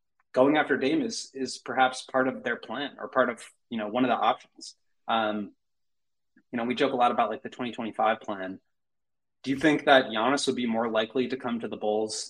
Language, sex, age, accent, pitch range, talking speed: English, male, 20-39, American, 110-130 Hz, 220 wpm